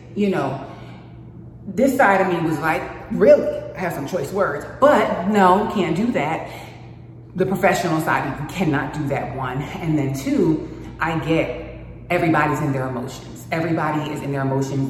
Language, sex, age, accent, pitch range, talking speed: English, female, 30-49, American, 140-195 Hz, 165 wpm